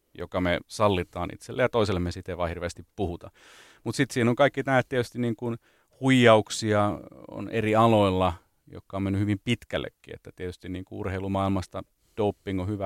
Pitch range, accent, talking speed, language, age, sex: 90-110 Hz, native, 160 wpm, Finnish, 30-49, male